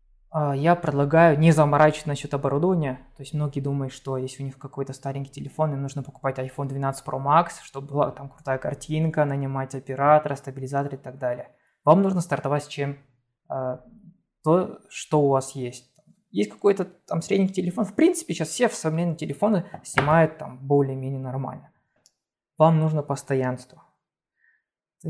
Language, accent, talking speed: Russian, native, 155 wpm